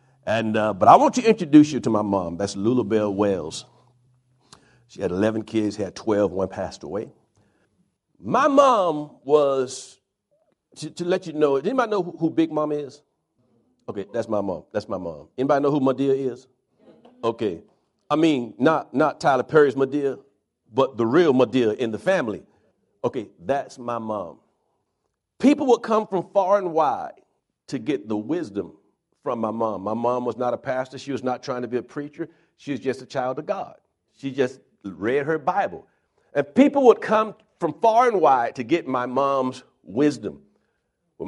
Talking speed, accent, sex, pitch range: 180 wpm, American, male, 125-180 Hz